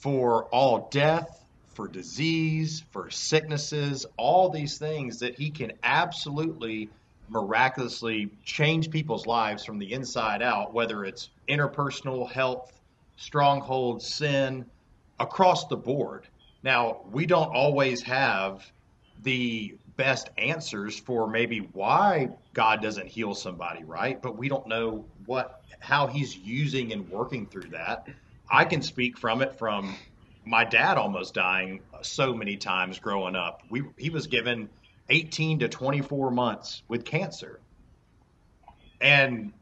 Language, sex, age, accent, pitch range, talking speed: English, male, 40-59, American, 110-145 Hz, 130 wpm